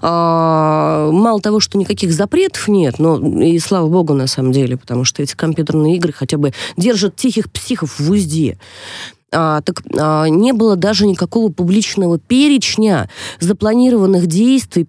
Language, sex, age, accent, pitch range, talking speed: Russian, female, 20-39, native, 140-190 Hz, 135 wpm